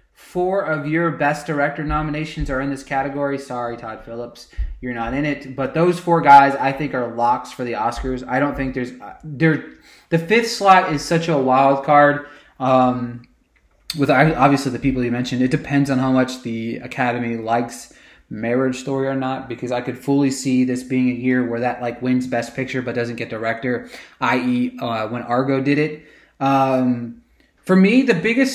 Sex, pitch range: male, 125-150 Hz